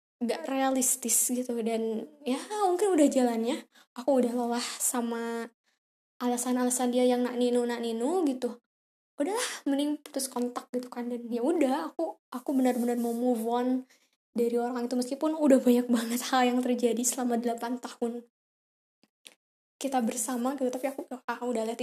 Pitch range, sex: 240-275 Hz, female